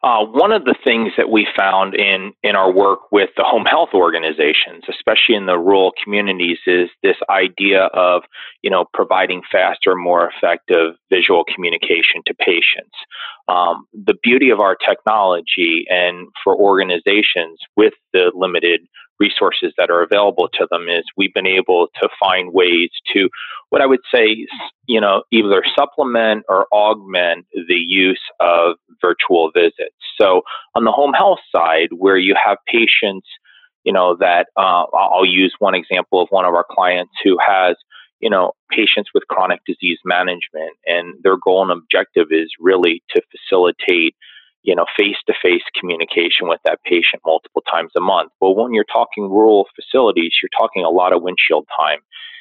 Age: 30-49